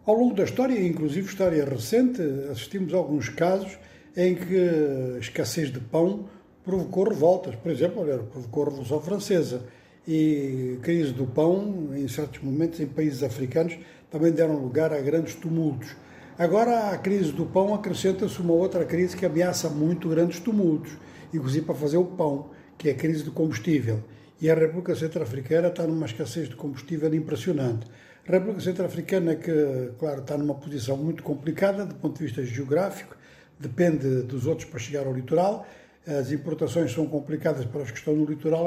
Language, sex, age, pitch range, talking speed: Portuguese, male, 60-79, 140-175 Hz, 170 wpm